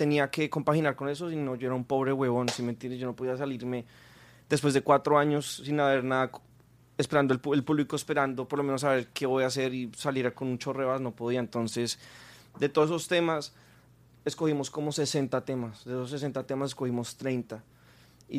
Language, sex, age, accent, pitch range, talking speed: Spanish, male, 20-39, Colombian, 120-145 Hz, 200 wpm